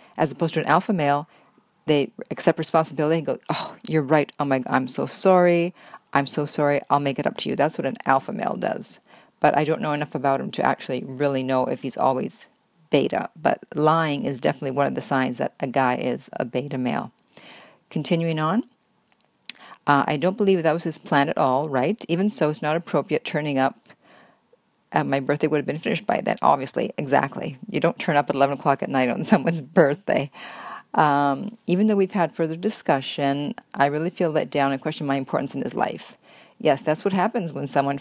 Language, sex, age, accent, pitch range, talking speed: English, female, 40-59, American, 145-170 Hz, 210 wpm